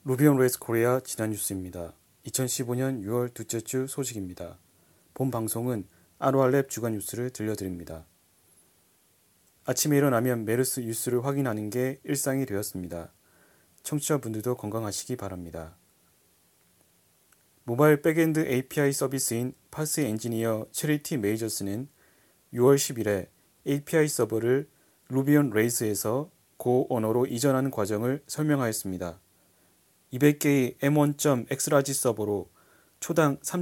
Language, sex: Korean, male